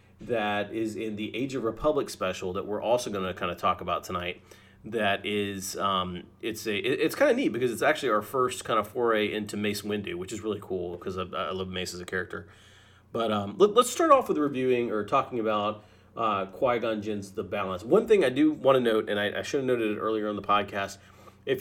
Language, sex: English, male